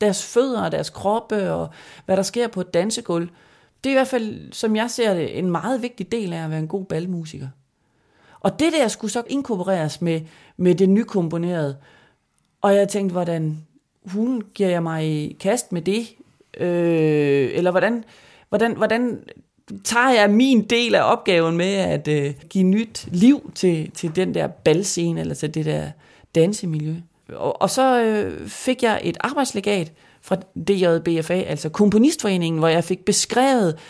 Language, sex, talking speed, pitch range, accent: Danish, male, 165 wpm, 165-220 Hz, native